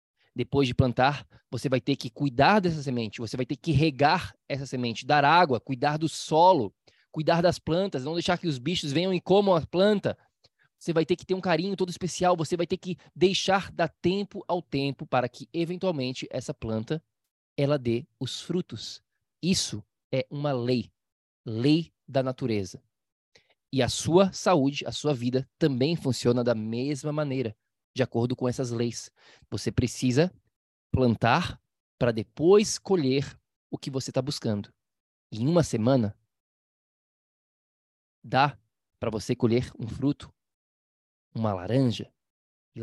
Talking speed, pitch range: 150 wpm, 115-155 Hz